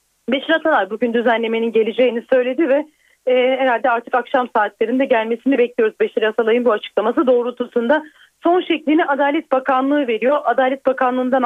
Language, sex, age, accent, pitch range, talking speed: Turkish, female, 30-49, native, 235-300 Hz, 135 wpm